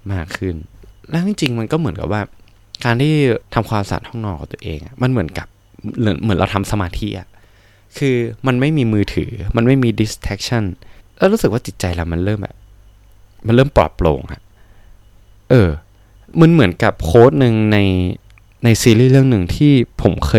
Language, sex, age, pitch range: Thai, male, 20-39, 95-110 Hz